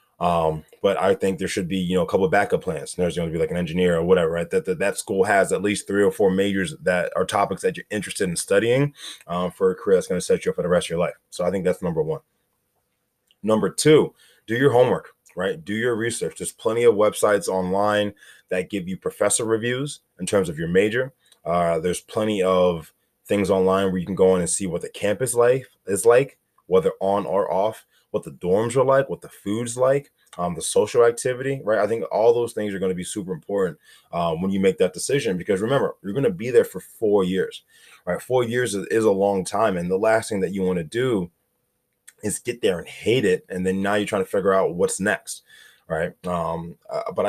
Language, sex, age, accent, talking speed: English, male, 20-39, American, 245 wpm